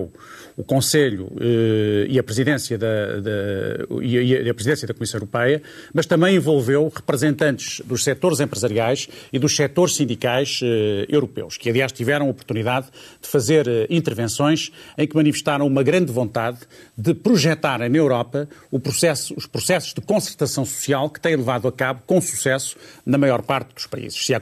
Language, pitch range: Portuguese, 125-155 Hz